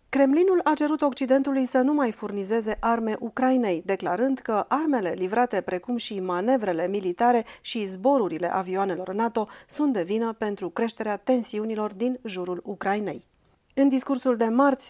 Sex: female